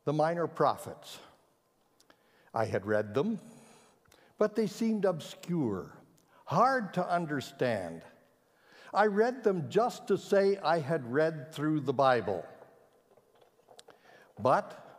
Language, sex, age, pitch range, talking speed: English, male, 60-79, 145-205 Hz, 110 wpm